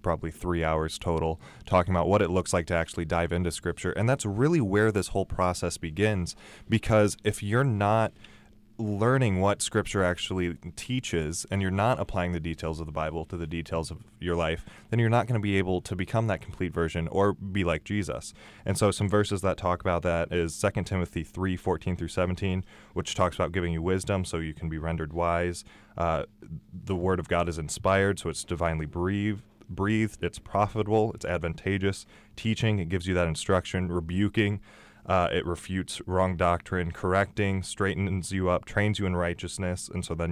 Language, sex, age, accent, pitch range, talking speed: English, male, 20-39, American, 85-105 Hz, 190 wpm